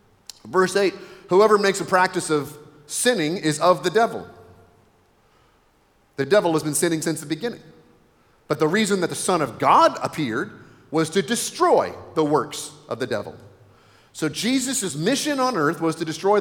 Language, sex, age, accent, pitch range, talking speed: English, male, 40-59, American, 150-195 Hz, 165 wpm